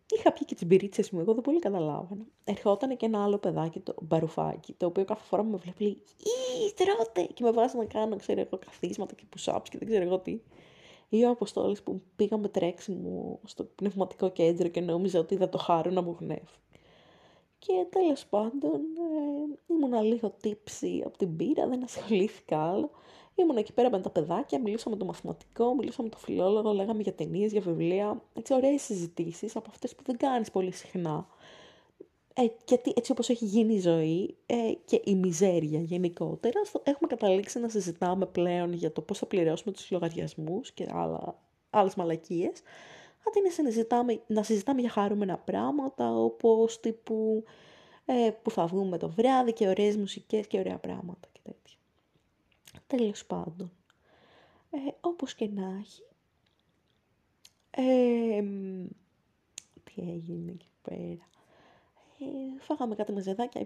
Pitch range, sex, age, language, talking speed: 185-245 Hz, female, 20-39, Greek, 160 wpm